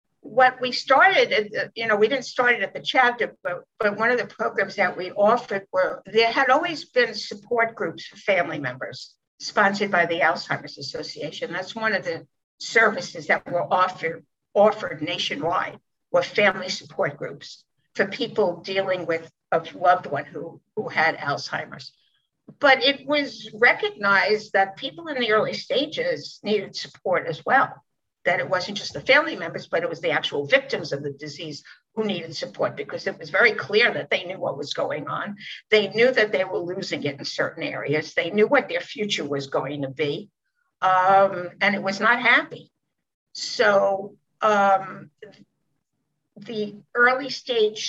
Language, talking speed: English, 170 wpm